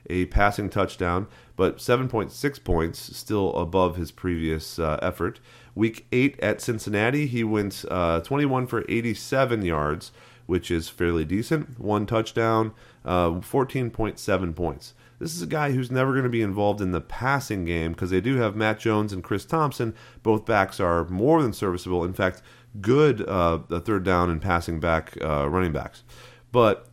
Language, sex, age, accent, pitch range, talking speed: English, male, 30-49, American, 90-120 Hz, 165 wpm